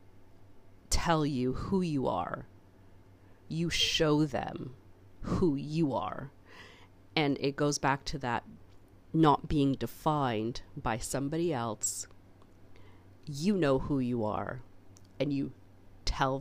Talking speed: 115 wpm